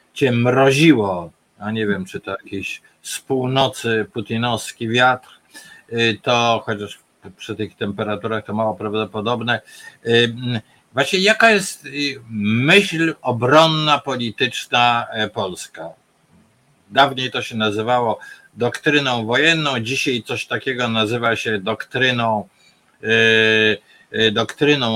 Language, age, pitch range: Polish, 50-69, 110-135 Hz